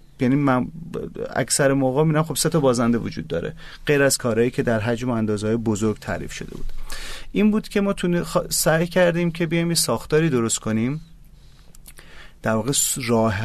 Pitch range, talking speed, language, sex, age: 115-145 Hz, 175 wpm, Persian, male, 30-49